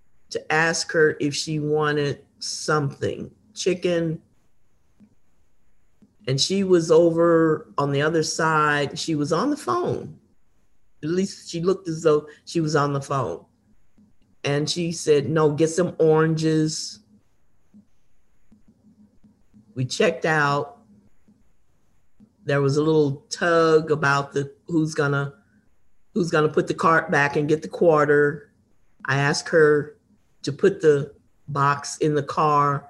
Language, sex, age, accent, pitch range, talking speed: English, male, 40-59, American, 140-160 Hz, 130 wpm